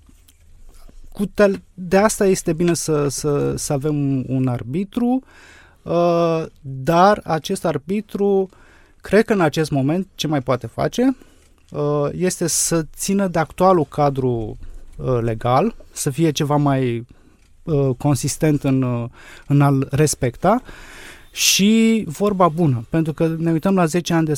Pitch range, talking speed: 135-180 Hz, 120 wpm